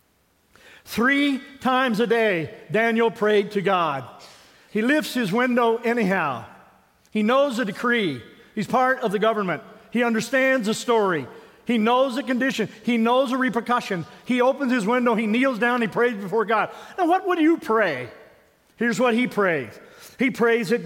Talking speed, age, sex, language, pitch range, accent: 165 wpm, 50-69, male, English, 215-255 Hz, American